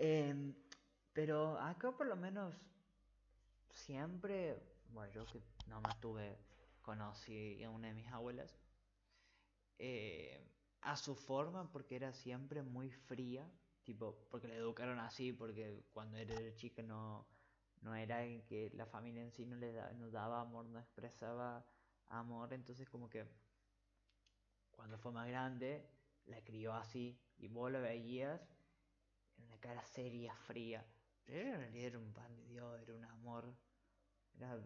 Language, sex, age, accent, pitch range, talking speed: Spanish, male, 20-39, Argentinian, 110-125 Hz, 145 wpm